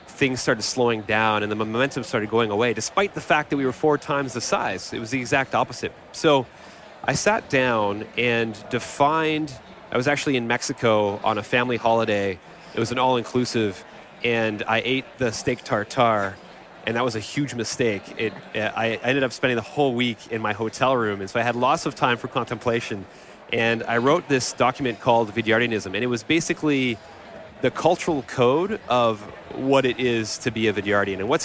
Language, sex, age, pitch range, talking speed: English, male, 30-49, 110-135 Hz, 195 wpm